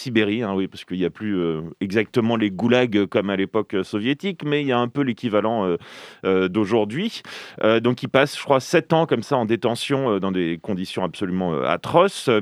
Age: 30-49